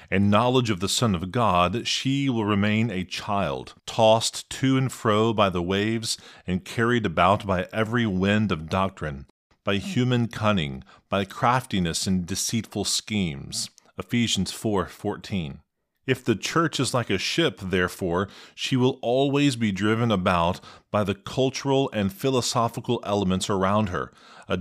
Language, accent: English, American